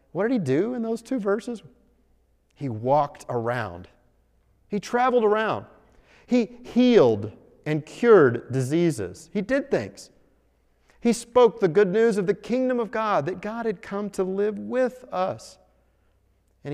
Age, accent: 40-59, American